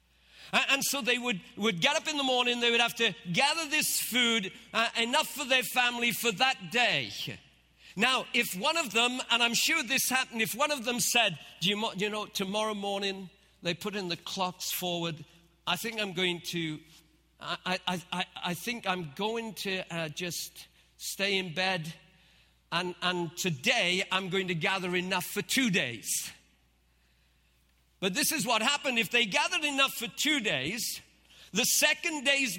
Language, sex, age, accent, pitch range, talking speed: English, male, 50-69, British, 180-260 Hz, 175 wpm